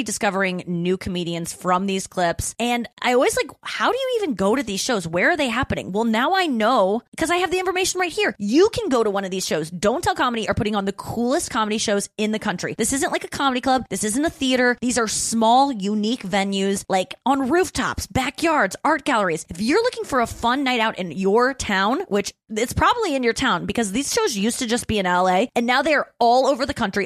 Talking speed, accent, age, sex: 240 wpm, American, 20-39, female